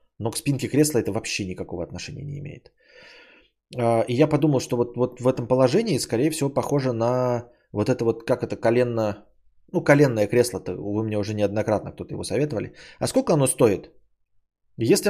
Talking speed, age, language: 175 wpm, 20-39, Bulgarian